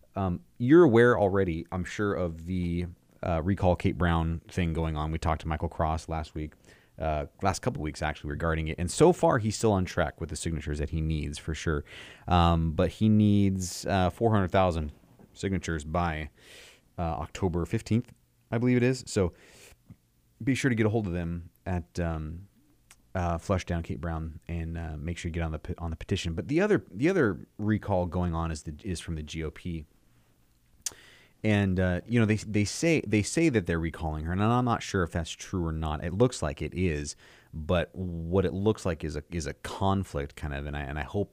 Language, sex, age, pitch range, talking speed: English, male, 30-49, 80-100 Hz, 210 wpm